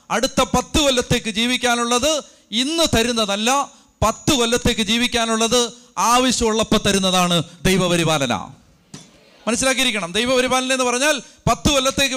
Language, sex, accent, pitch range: Malayalam, male, native, 210-260 Hz